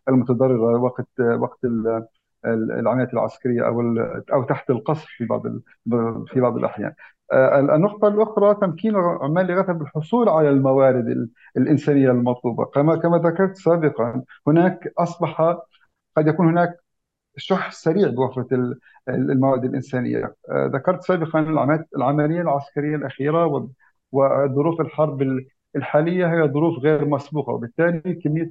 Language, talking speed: Arabic, 105 wpm